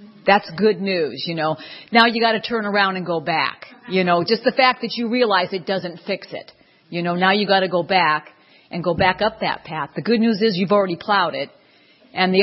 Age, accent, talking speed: 50-69, American, 240 wpm